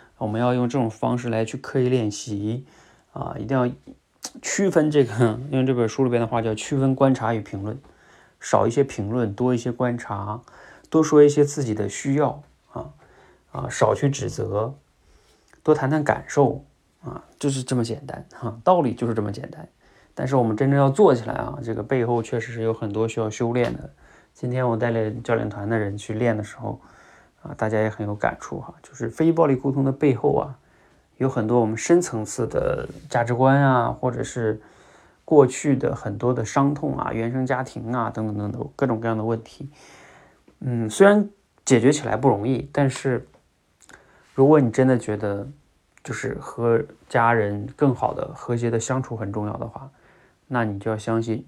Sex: male